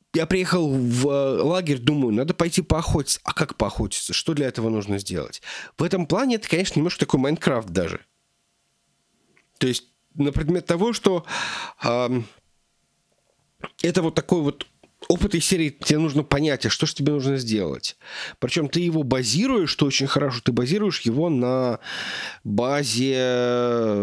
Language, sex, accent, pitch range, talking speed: Russian, male, native, 110-155 Hz, 150 wpm